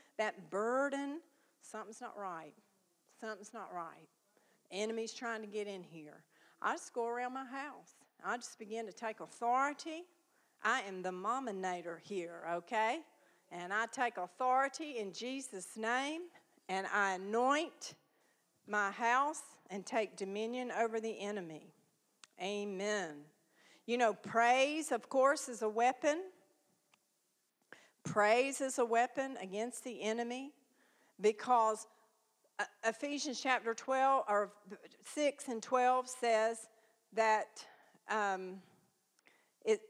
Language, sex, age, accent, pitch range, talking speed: English, female, 50-69, American, 205-255 Hz, 120 wpm